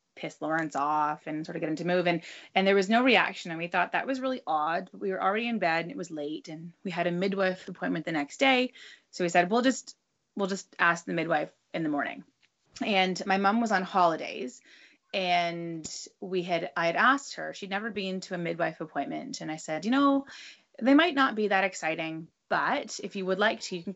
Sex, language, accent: female, English, American